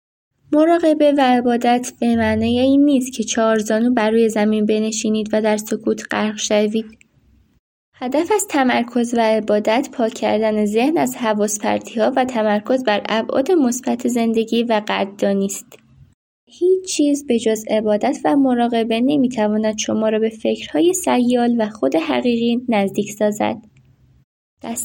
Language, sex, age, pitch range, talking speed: Persian, female, 10-29, 215-250 Hz, 140 wpm